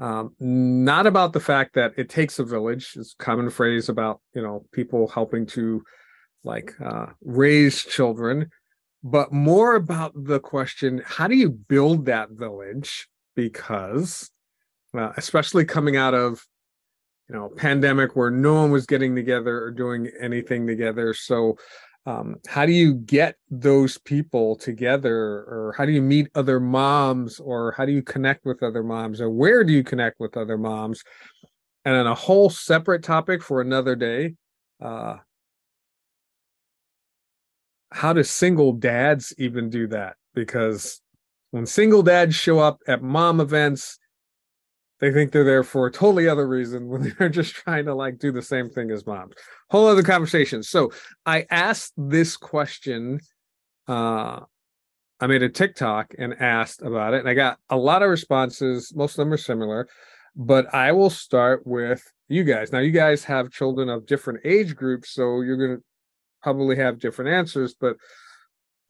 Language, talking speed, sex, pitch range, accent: English, 165 wpm, male, 120-150 Hz, American